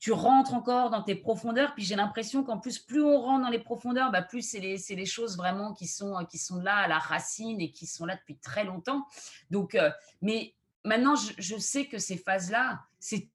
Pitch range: 180-240 Hz